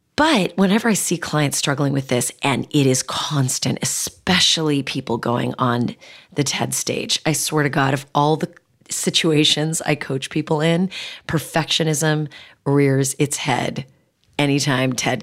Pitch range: 140-185 Hz